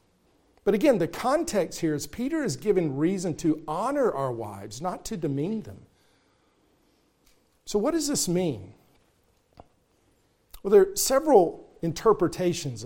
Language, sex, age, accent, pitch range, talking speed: English, male, 50-69, American, 150-185 Hz, 130 wpm